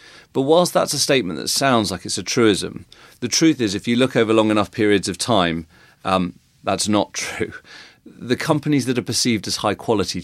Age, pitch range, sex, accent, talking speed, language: 40-59, 95-120 Hz, male, British, 205 wpm, English